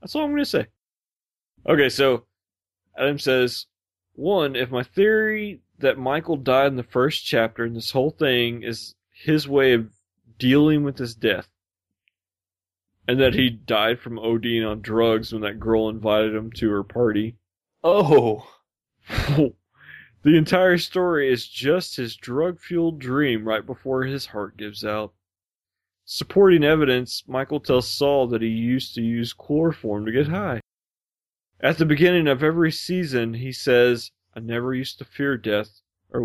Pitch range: 105-140 Hz